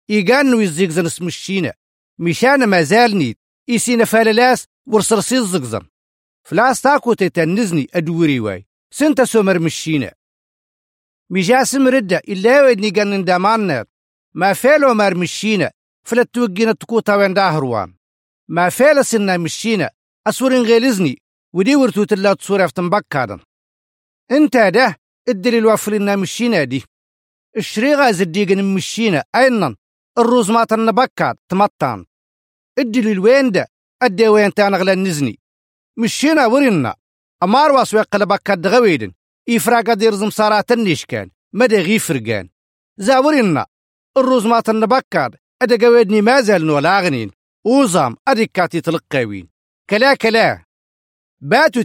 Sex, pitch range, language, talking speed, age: male, 165-240 Hz, Arabic, 100 wpm, 50-69